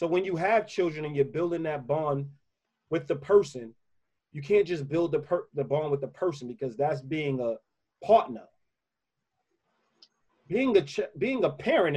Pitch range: 140-185 Hz